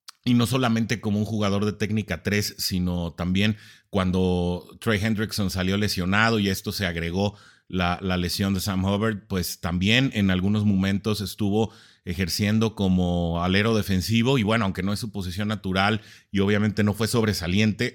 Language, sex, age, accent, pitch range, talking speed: English, male, 30-49, Mexican, 95-110 Hz, 165 wpm